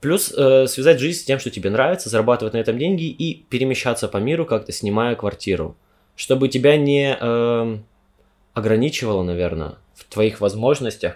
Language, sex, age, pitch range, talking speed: Russian, male, 20-39, 105-135 Hz, 145 wpm